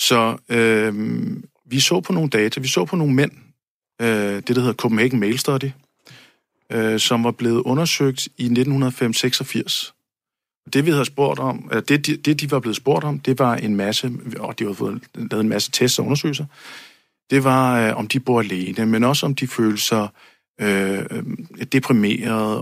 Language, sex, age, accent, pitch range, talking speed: Danish, male, 50-69, native, 110-135 Hz, 190 wpm